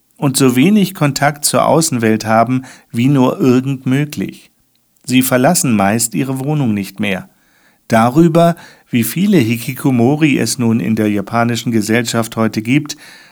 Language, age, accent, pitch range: German, 50-69, German, 115-150 Hz